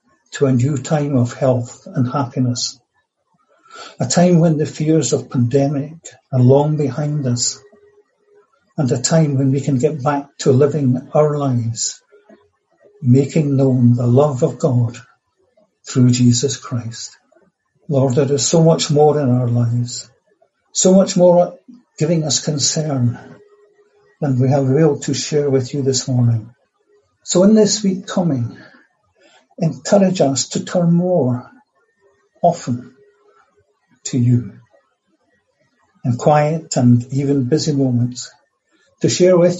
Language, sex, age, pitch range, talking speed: English, male, 60-79, 125-170 Hz, 130 wpm